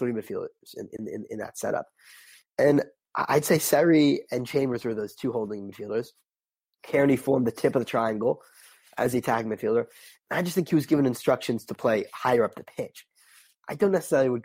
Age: 20-39